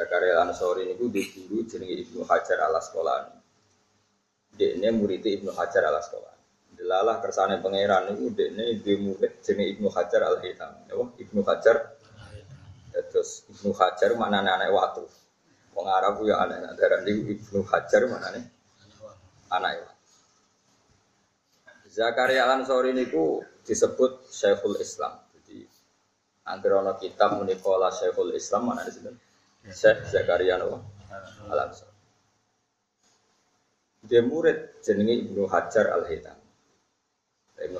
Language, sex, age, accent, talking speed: Indonesian, male, 20-39, native, 115 wpm